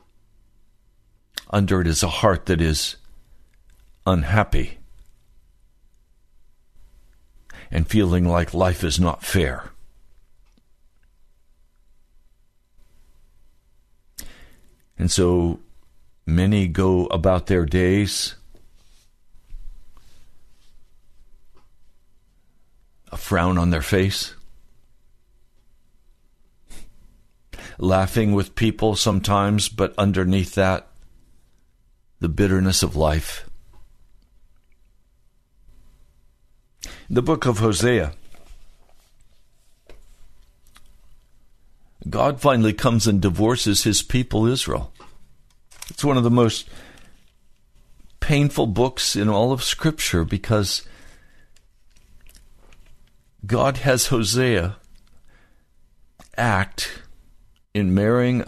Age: 60-79